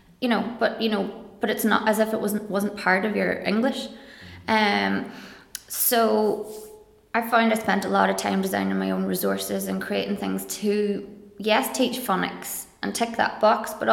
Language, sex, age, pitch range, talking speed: English, female, 20-39, 195-230 Hz, 185 wpm